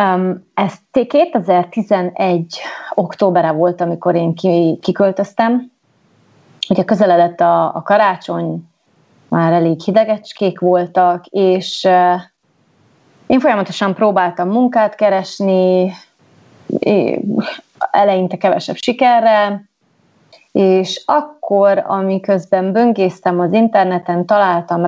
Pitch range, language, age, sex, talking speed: 175-220 Hz, Hungarian, 30-49, female, 85 wpm